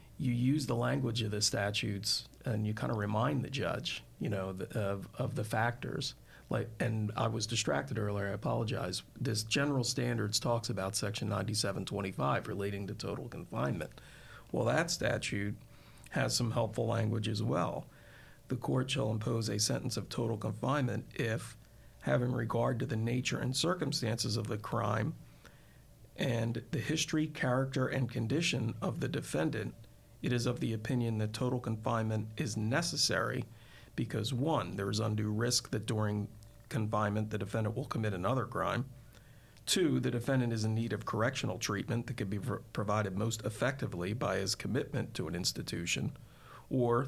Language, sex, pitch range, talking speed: English, male, 110-130 Hz, 160 wpm